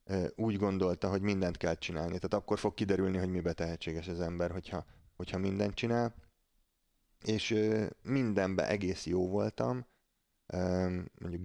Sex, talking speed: male, 130 wpm